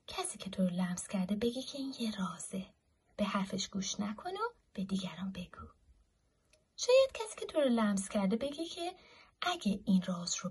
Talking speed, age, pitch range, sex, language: 185 wpm, 30-49, 190-290 Hz, female, Persian